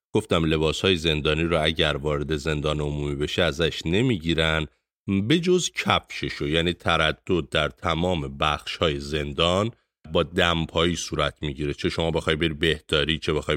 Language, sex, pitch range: Persian, male, 75-95 Hz